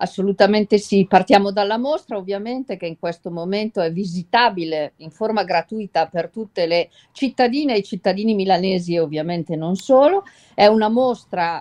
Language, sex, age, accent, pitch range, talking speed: Italian, female, 50-69, native, 165-220 Hz, 155 wpm